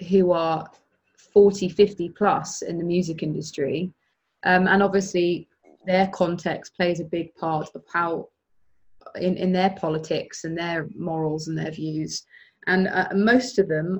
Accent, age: British, 20-39